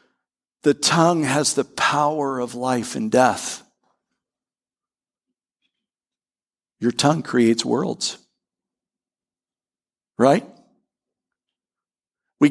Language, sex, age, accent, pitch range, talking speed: English, male, 50-69, American, 140-190 Hz, 70 wpm